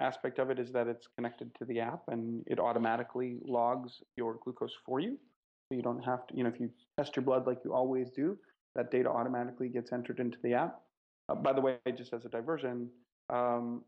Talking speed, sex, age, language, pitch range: 220 wpm, male, 30-49, English, 115-125 Hz